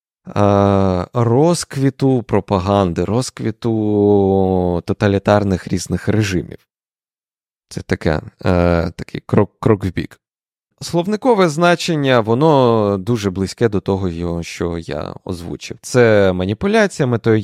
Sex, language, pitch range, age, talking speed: male, Ukrainian, 100-140 Hz, 20-39, 90 wpm